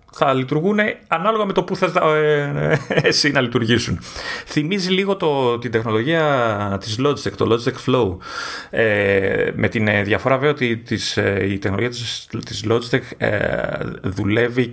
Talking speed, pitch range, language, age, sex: 125 wpm, 105-145 Hz, Greek, 30-49, male